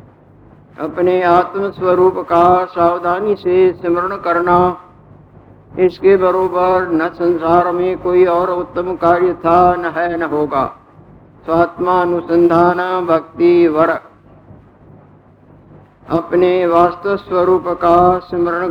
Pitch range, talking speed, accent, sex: 175-185 Hz, 95 wpm, native, male